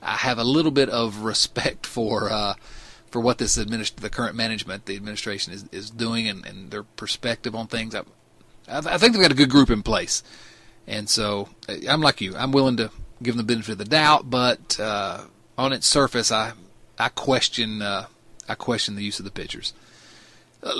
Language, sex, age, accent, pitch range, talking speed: English, male, 30-49, American, 110-125 Hz, 205 wpm